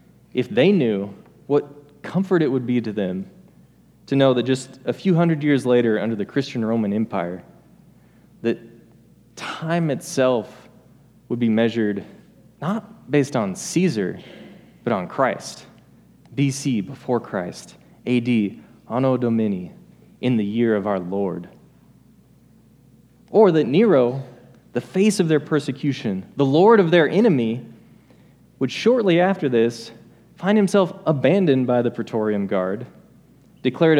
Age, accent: 20-39, American